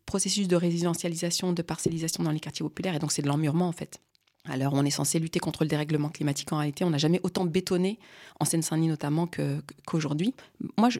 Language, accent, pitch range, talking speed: French, French, 155-200 Hz, 205 wpm